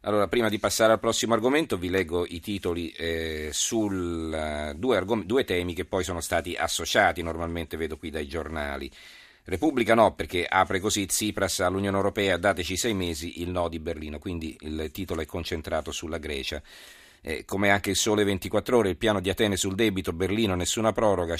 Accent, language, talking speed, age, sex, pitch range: native, Italian, 180 wpm, 40-59, male, 80-100 Hz